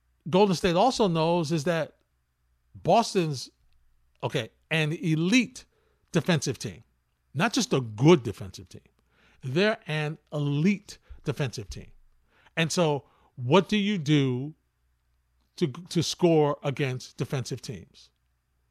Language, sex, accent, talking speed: English, male, American, 110 wpm